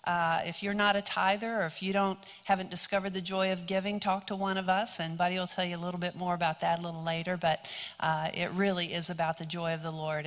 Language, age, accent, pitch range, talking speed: English, 50-69, American, 180-220 Hz, 270 wpm